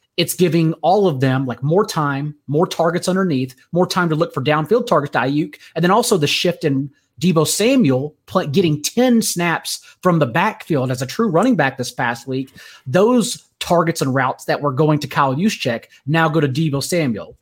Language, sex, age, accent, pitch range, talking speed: English, male, 30-49, American, 140-180 Hz, 195 wpm